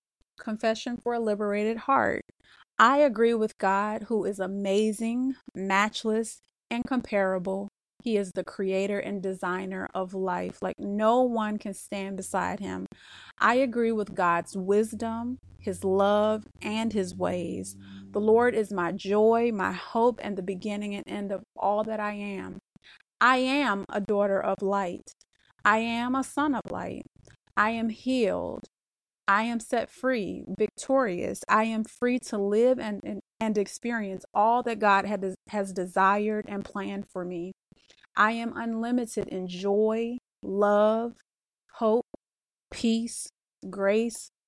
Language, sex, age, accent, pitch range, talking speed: English, female, 30-49, American, 195-230 Hz, 140 wpm